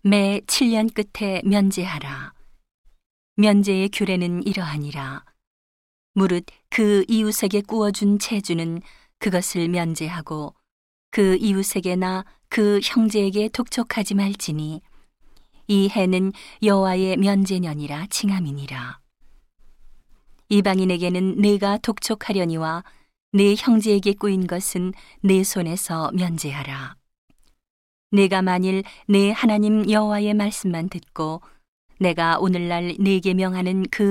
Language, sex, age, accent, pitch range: Korean, female, 40-59, native, 170-200 Hz